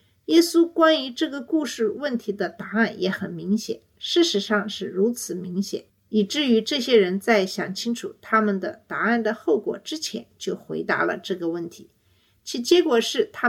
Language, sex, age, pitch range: Chinese, female, 50-69, 195-265 Hz